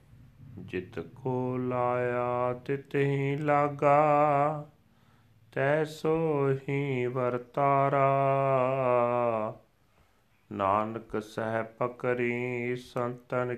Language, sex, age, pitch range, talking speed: Punjabi, male, 40-59, 110-130 Hz, 60 wpm